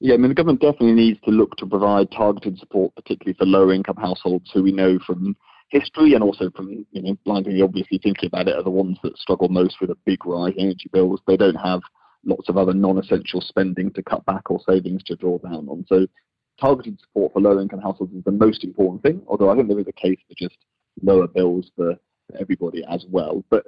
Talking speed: 230 wpm